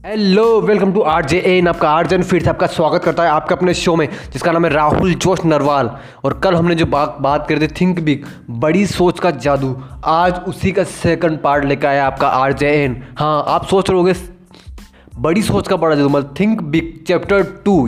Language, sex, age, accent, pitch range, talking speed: Hindi, male, 20-39, native, 150-190 Hz, 205 wpm